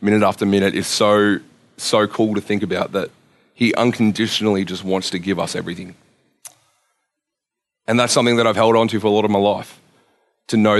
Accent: Australian